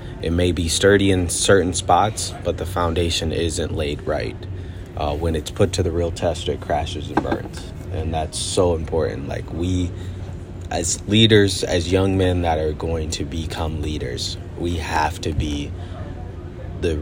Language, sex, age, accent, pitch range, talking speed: English, male, 30-49, American, 80-95 Hz, 165 wpm